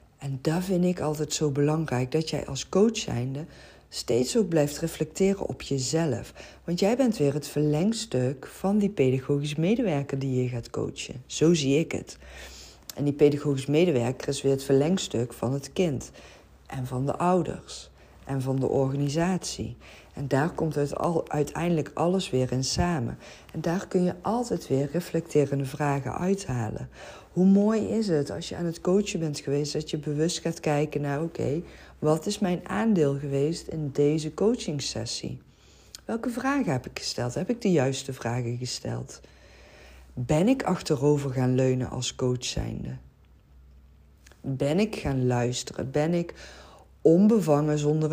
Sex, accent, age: female, Dutch, 50-69